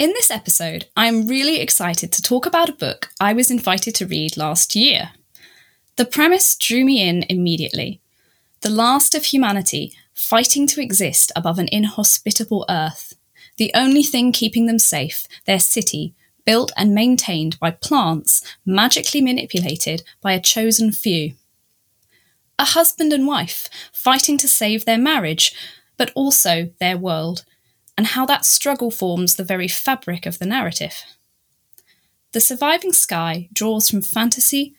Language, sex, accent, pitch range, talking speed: English, female, British, 180-255 Hz, 145 wpm